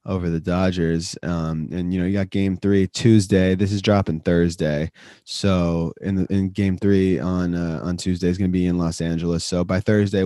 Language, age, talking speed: English, 20-39, 210 wpm